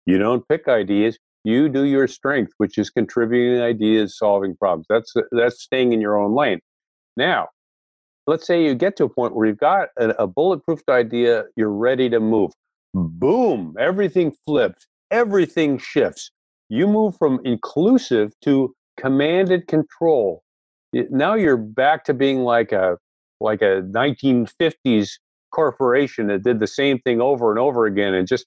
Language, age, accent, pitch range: English, 50-69, American, 105-145 Hz